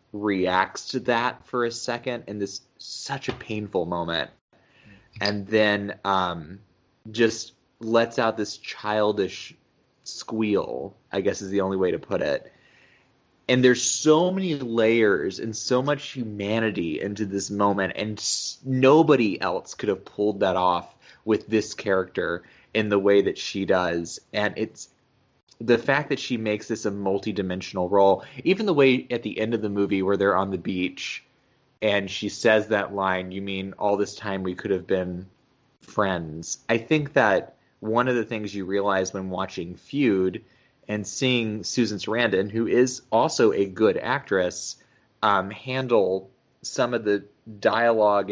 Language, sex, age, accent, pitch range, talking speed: English, male, 20-39, American, 95-120 Hz, 160 wpm